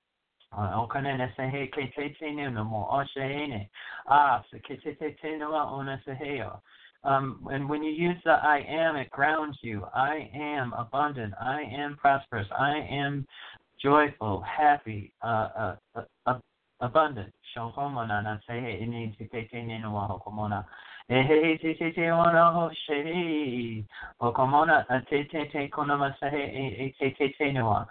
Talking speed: 55 wpm